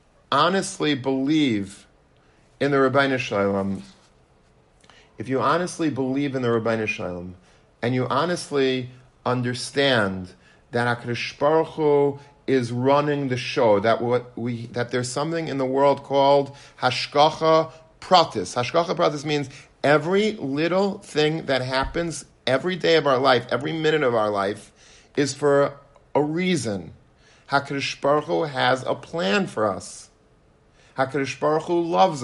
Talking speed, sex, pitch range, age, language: 130 wpm, male, 115-150 Hz, 50-69, English